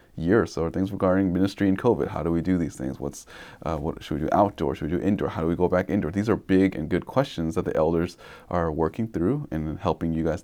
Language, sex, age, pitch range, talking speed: English, male, 30-49, 80-95 Hz, 275 wpm